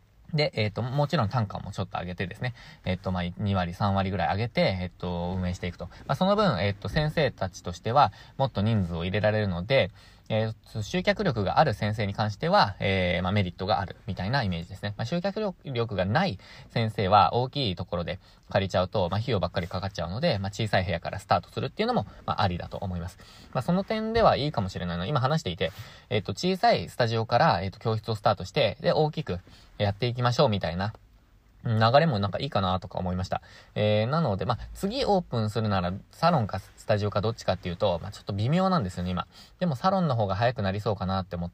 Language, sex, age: Japanese, male, 20-39